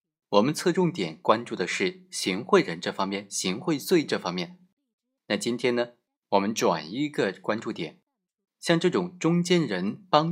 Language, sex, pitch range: Chinese, male, 105-180 Hz